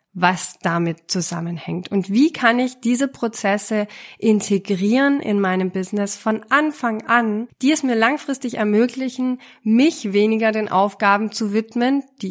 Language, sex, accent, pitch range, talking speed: German, female, German, 195-250 Hz, 135 wpm